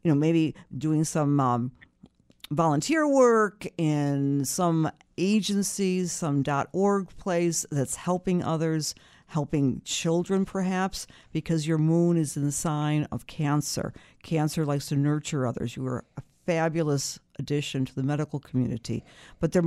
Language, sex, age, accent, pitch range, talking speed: English, female, 50-69, American, 140-175 Hz, 135 wpm